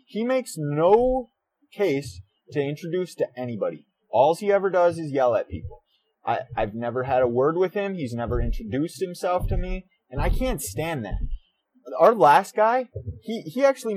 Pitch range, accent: 130-180 Hz, American